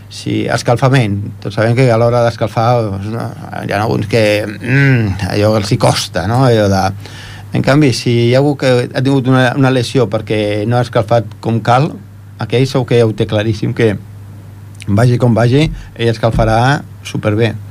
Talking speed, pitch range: 175 wpm, 105-130 Hz